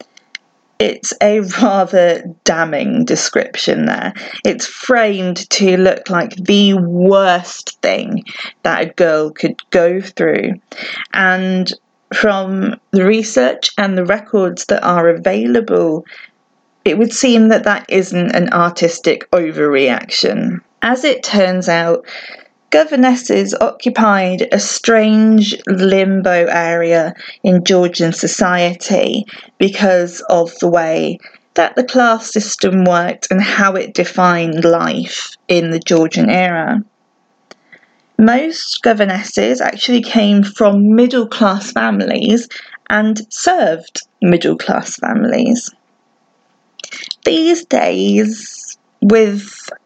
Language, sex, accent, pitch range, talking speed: English, female, British, 175-225 Hz, 100 wpm